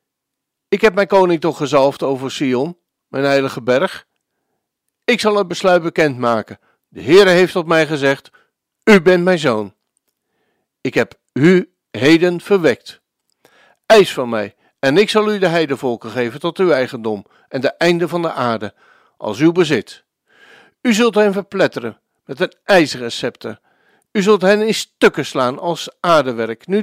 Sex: male